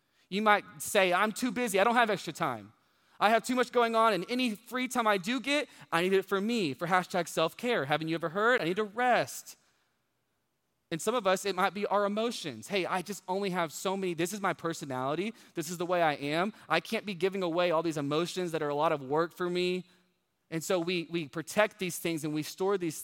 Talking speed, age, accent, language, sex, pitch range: 240 wpm, 20-39, American, English, male, 165-220 Hz